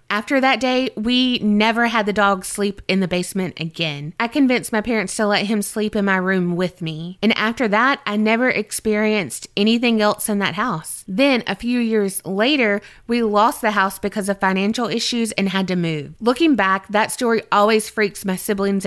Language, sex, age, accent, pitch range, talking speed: English, female, 20-39, American, 190-240 Hz, 195 wpm